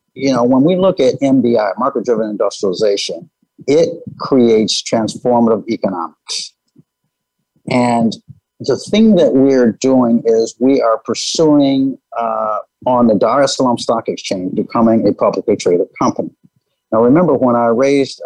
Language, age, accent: English, 50-69, American